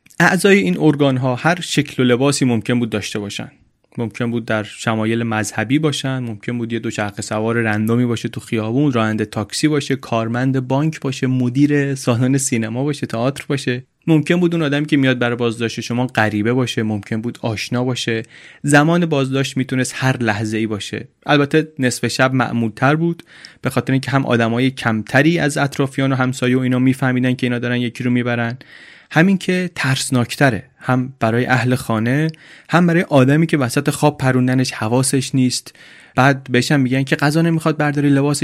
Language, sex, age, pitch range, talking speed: Persian, male, 30-49, 120-145 Hz, 170 wpm